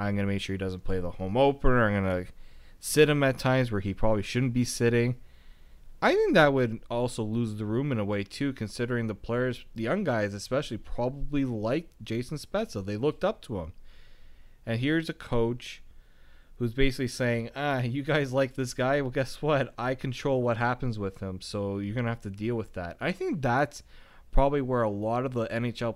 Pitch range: 100-130 Hz